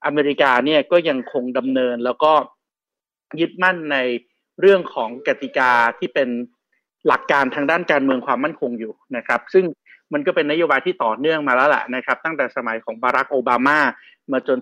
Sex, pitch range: male, 130-185 Hz